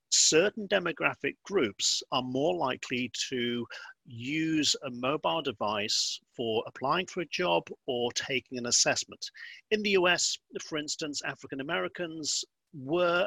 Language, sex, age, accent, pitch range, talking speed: English, male, 50-69, British, 125-175 Hz, 125 wpm